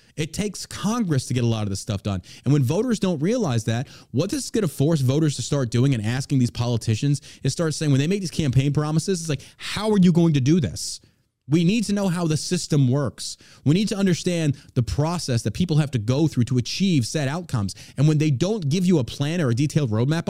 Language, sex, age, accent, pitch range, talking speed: English, male, 30-49, American, 120-160 Hz, 250 wpm